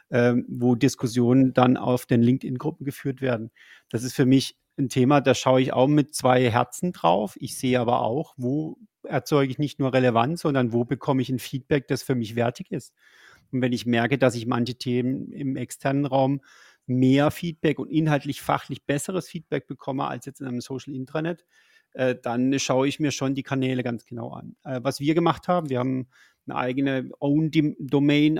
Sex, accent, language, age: male, German, German, 30-49